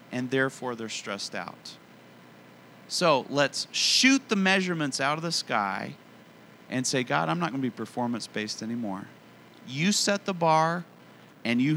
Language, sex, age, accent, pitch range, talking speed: English, male, 40-59, American, 120-175 Hz, 155 wpm